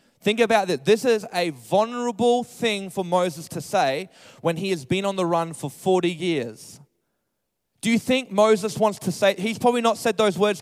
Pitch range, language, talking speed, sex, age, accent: 170-215 Hz, English, 200 wpm, male, 20-39, Australian